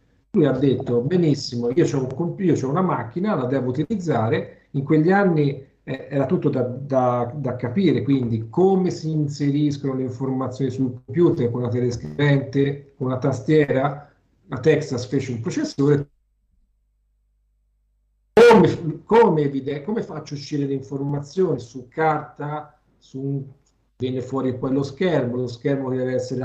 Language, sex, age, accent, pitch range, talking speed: Italian, male, 50-69, native, 120-145 Hz, 140 wpm